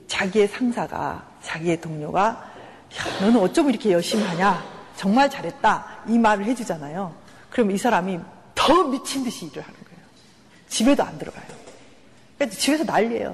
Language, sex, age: Korean, female, 40-59